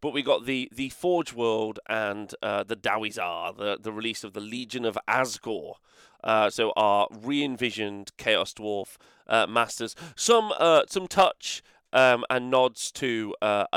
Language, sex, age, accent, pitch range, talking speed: English, male, 30-49, British, 105-125 Hz, 155 wpm